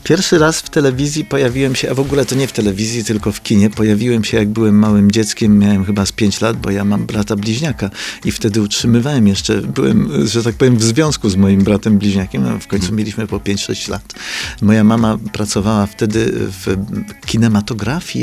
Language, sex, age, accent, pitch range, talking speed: Polish, male, 40-59, native, 100-120 Hz, 195 wpm